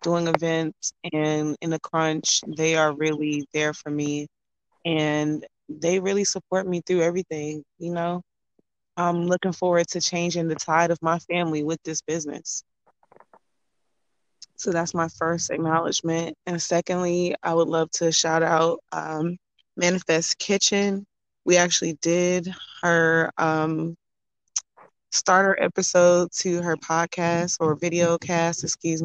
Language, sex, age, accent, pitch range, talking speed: English, female, 20-39, American, 160-175 Hz, 130 wpm